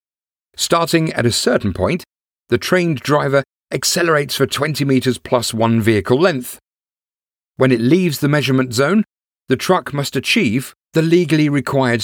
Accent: British